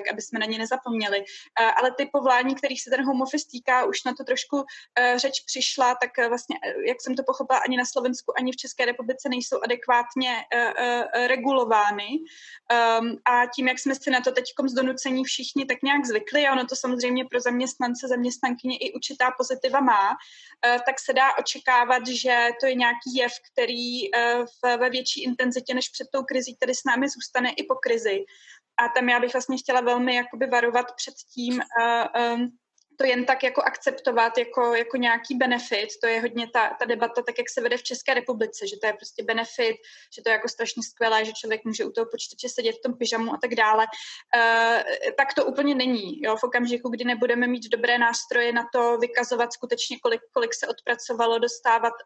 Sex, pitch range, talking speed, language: female, 235-260 Hz, 190 wpm, Slovak